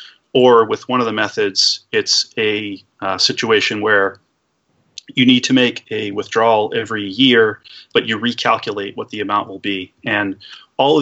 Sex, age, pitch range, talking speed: male, 30-49, 105-125 Hz, 165 wpm